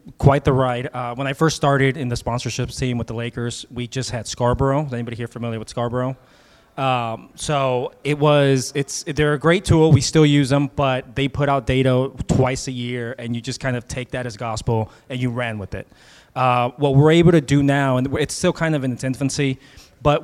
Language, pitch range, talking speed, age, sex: English, 125-140 Hz, 225 wpm, 20-39, male